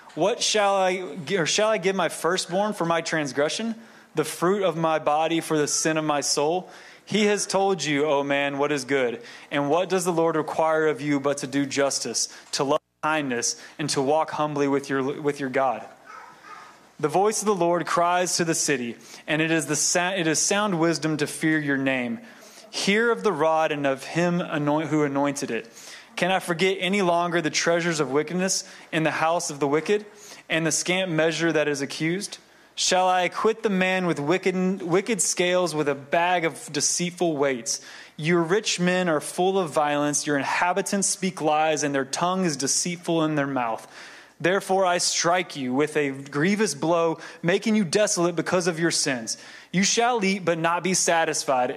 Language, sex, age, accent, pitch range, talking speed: English, male, 20-39, American, 150-180 Hz, 195 wpm